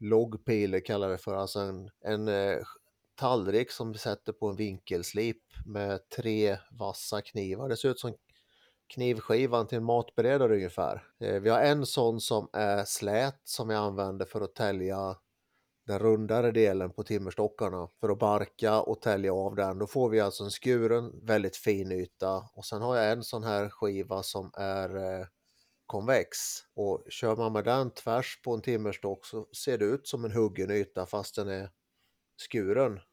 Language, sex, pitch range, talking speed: Swedish, male, 95-110 Hz, 170 wpm